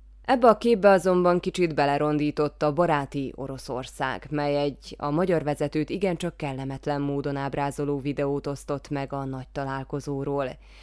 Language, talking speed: Hungarian, 135 wpm